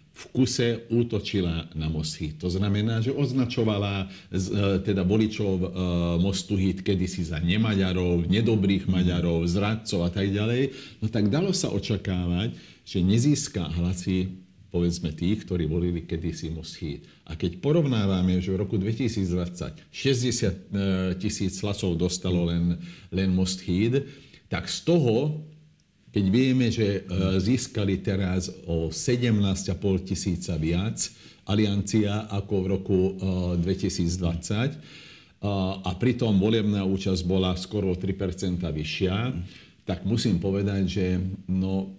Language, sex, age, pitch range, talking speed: Slovak, male, 50-69, 90-105 Hz, 115 wpm